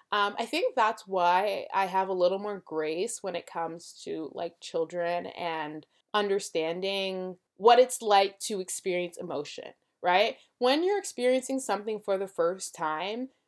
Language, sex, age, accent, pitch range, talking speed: English, female, 20-39, American, 175-230 Hz, 150 wpm